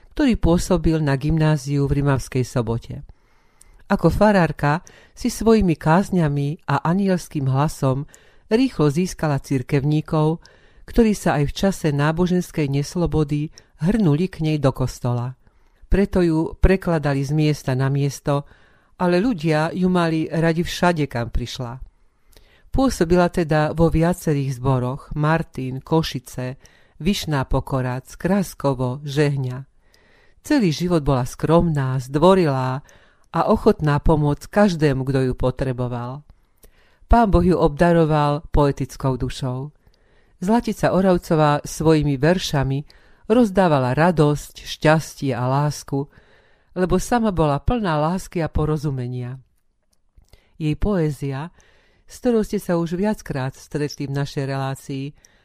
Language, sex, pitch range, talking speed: Slovak, female, 135-175 Hz, 110 wpm